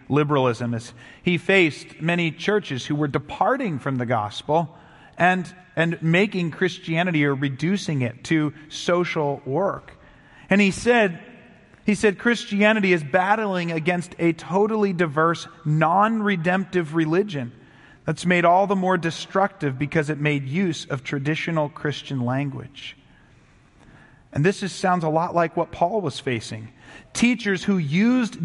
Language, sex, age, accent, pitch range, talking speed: English, male, 40-59, American, 145-185 Hz, 140 wpm